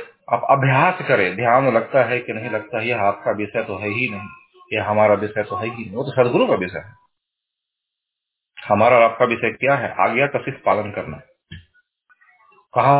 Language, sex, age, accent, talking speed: Hindi, male, 40-59, native, 175 wpm